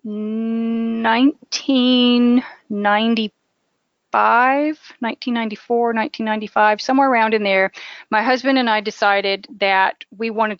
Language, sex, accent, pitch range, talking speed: English, female, American, 210-250 Hz, 85 wpm